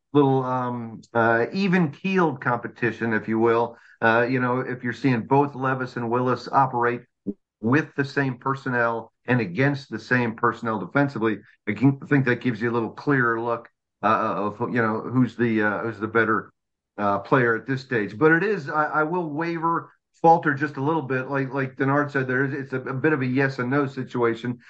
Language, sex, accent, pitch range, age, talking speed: English, male, American, 120-145 Hz, 50-69, 200 wpm